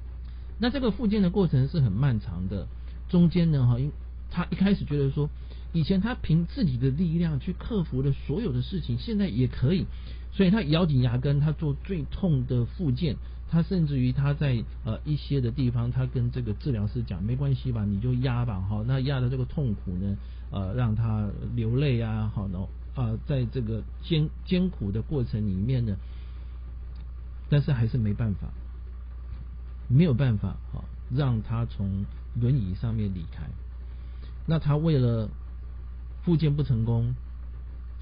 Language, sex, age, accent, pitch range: Chinese, male, 50-69, native, 90-140 Hz